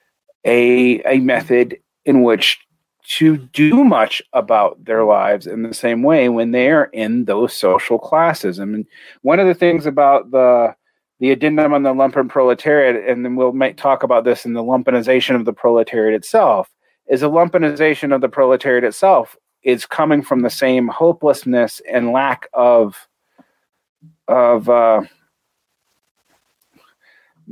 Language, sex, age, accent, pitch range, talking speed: English, male, 40-59, American, 125-160 Hz, 155 wpm